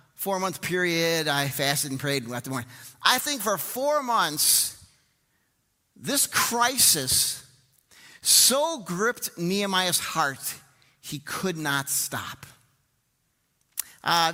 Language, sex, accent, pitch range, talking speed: English, male, American, 140-220 Hz, 110 wpm